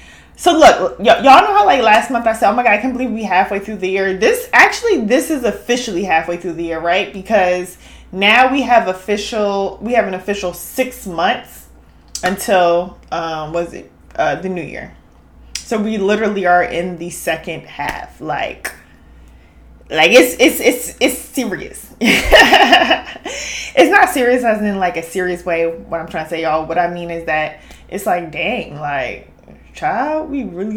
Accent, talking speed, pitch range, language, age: American, 180 wpm, 165-225 Hz, English, 20-39